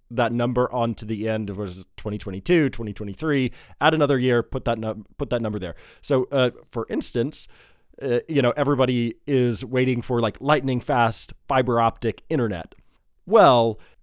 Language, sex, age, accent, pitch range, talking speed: English, male, 30-49, American, 110-135 Hz, 165 wpm